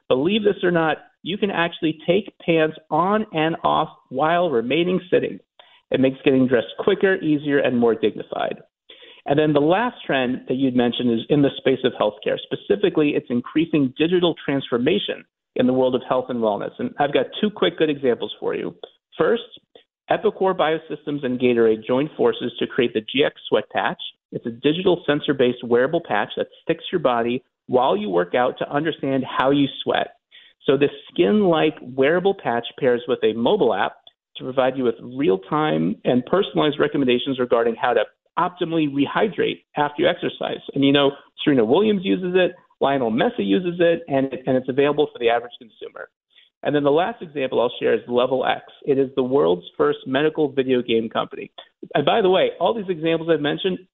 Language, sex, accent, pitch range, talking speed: English, male, American, 130-185 Hz, 185 wpm